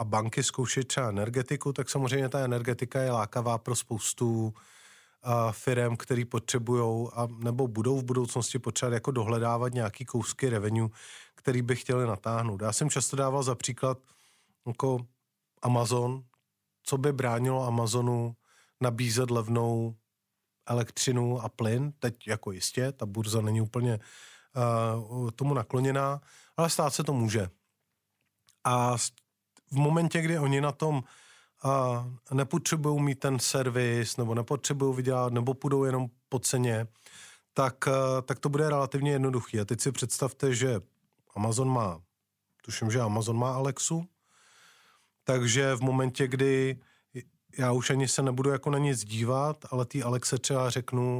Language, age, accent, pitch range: Czech, 30-49, native, 115-135 Hz